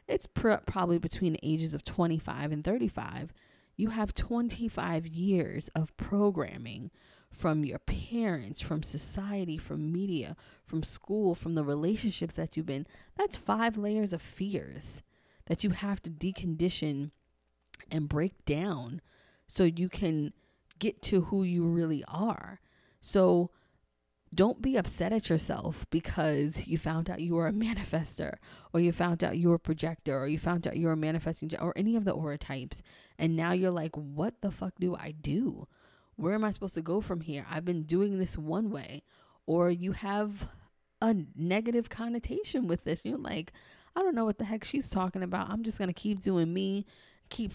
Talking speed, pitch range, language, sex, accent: 175 wpm, 160-200 Hz, English, female, American